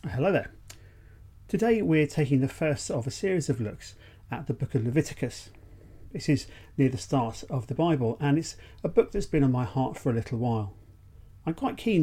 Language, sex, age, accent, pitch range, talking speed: English, male, 40-59, British, 100-140 Hz, 205 wpm